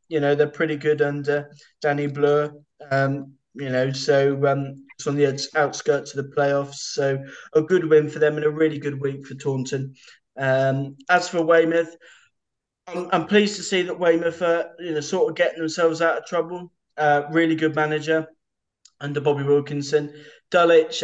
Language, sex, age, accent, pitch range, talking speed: English, male, 20-39, British, 140-165 Hz, 175 wpm